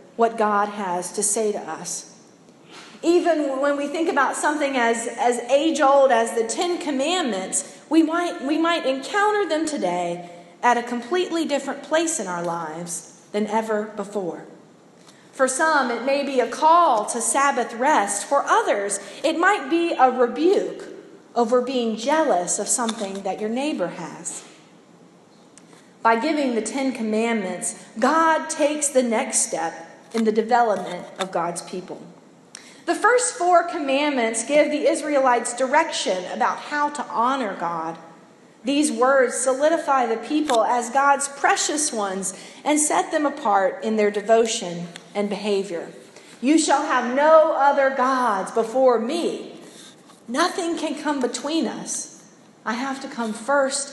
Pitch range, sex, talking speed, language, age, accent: 210-300 Hz, female, 140 wpm, English, 40-59, American